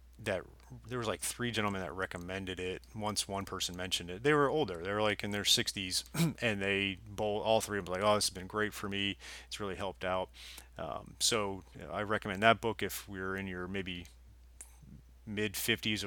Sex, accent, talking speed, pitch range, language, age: male, American, 200 wpm, 85-105 Hz, English, 30-49